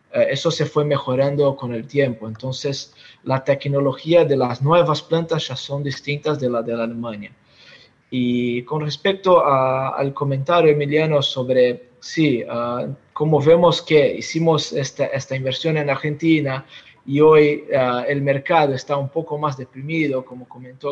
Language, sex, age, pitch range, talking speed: Spanish, male, 20-39, 135-165 Hz, 150 wpm